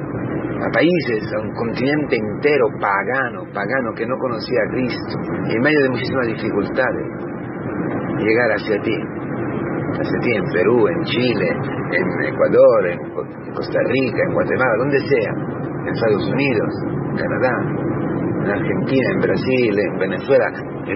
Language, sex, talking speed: Spanish, male, 135 wpm